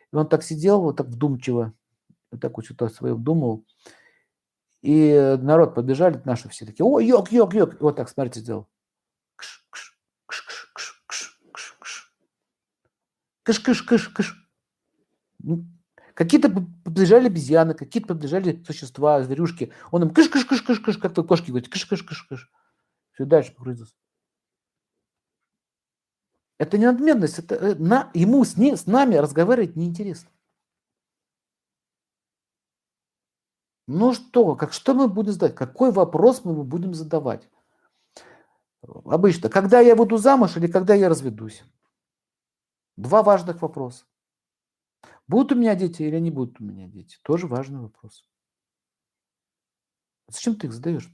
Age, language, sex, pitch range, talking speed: 50-69, Russian, male, 135-205 Hz, 120 wpm